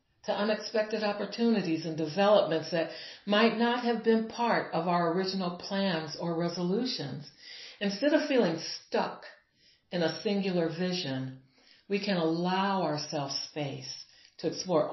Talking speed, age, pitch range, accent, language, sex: 130 wpm, 60-79, 150-205 Hz, American, English, female